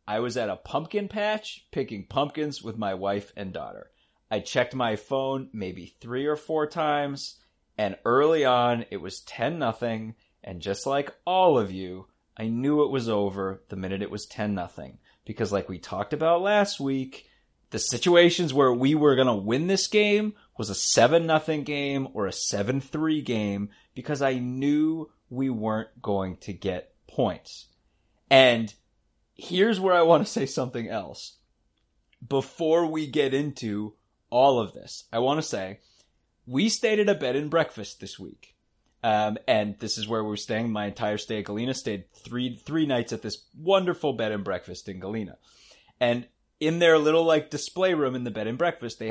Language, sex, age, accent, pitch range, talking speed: English, male, 30-49, American, 105-155 Hz, 180 wpm